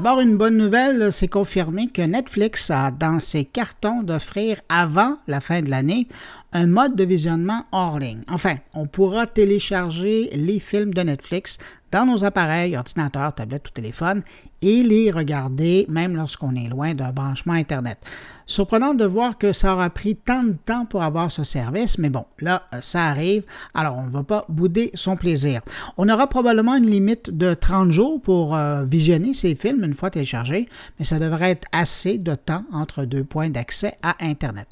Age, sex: 50-69, male